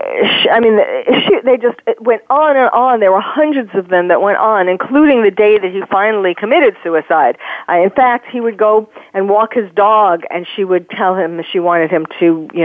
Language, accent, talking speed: English, American, 210 wpm